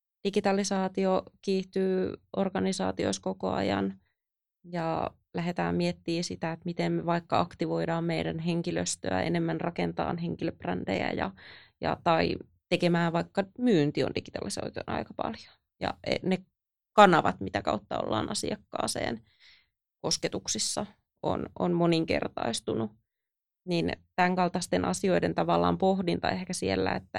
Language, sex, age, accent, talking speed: Finnish, female, 30-49, native, 105 wpm